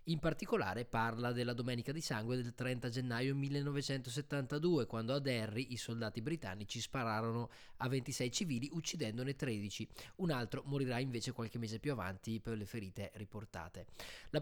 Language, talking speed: Italian, 150 wpm